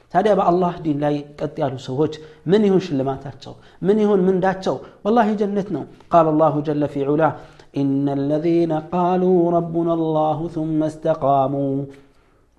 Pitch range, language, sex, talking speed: 145-180 Hz, Amharic, male, 140 wpm